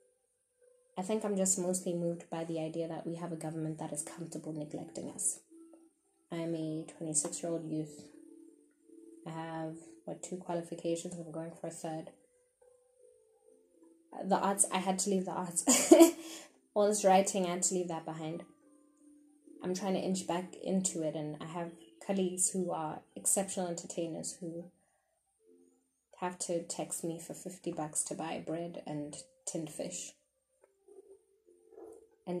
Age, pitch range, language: 10-29, 165-265 Hz, English